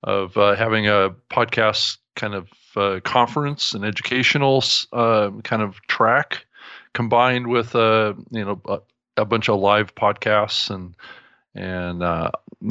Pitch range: 100-115 Hz